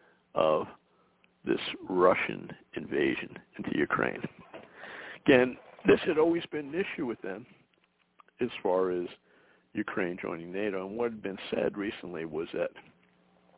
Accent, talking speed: American, 130 wpm